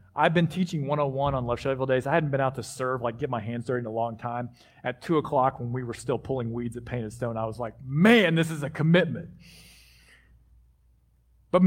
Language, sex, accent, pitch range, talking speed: English, male, American, 125-195 Hz, 225 wpm